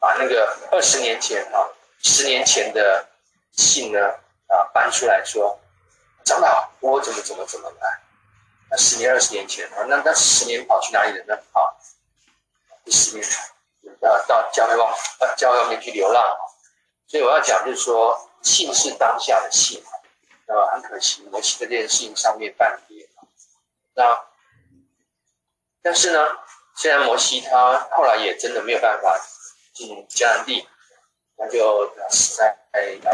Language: Chinese